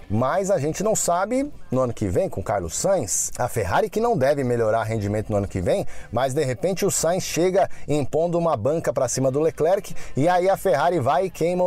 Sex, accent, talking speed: male, Brazilian, 220 wpm